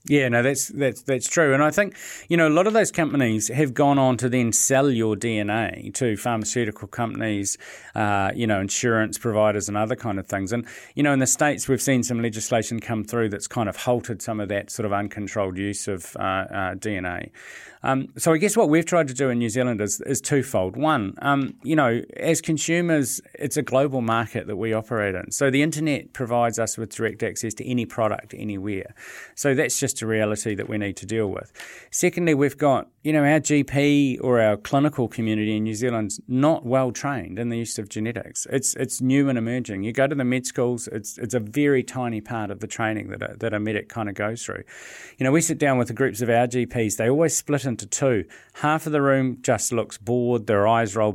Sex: male